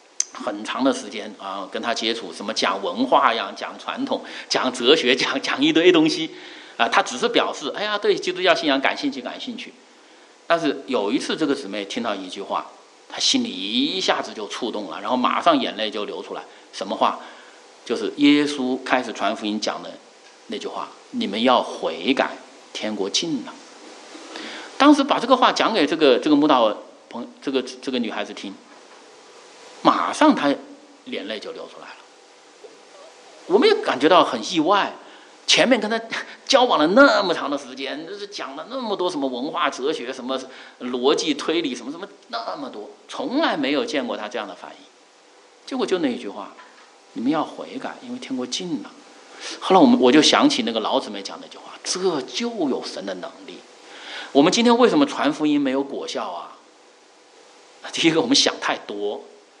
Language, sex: English, male